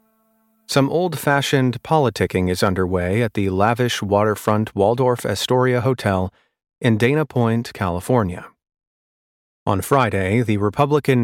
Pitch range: 100-125 Hz